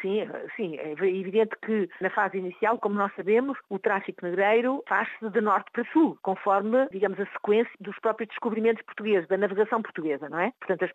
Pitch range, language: 190-230 Hz, Portuguese